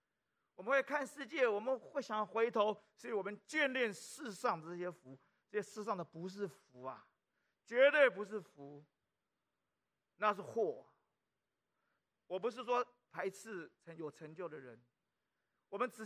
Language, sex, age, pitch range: Chinese, male, 40-59, 190-270 Hz